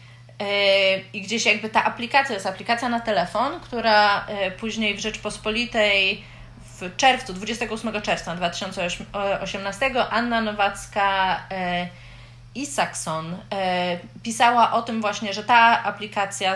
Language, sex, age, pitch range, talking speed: Polish, female, 30-49, 185-225 Hz, 105 wpm